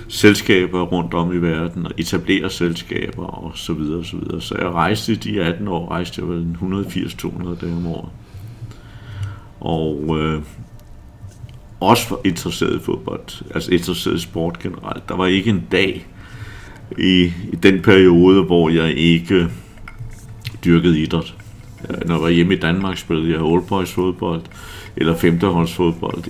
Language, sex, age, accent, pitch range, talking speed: Danish, male, 60-79, native, 85-100 Hz, 155 wpm